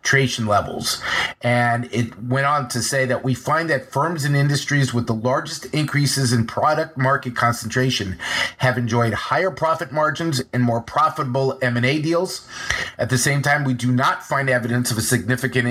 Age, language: 30-49, English